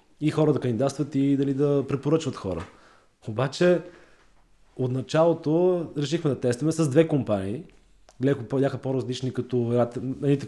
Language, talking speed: Bulgarian, 130 wpm